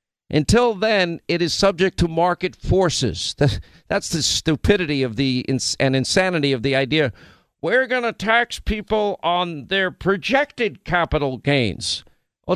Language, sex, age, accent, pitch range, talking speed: English, male, 50-69, American, 135-190 Hz, 145 wpm